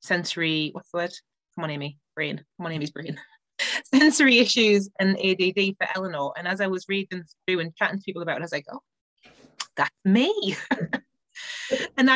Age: 20-39